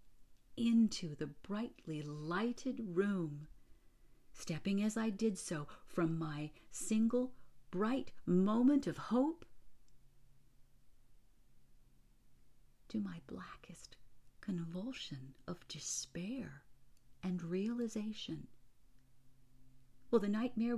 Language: English